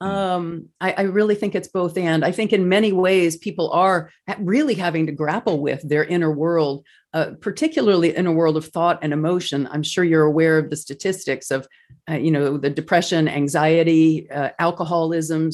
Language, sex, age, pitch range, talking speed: English, female, 40-59, 160-225 Hz, 185 wpm